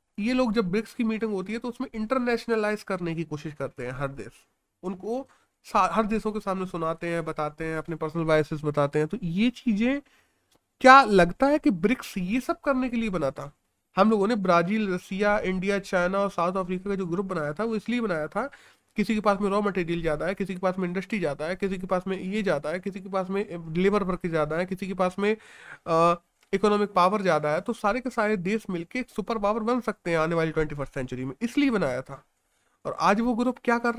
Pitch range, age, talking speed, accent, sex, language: 170-215 Hz, 30-49, 210 wpm, native, male, Hindi